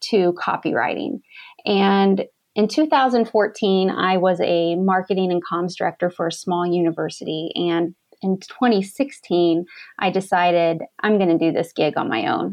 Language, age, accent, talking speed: English, 30-49, American, 145 wpm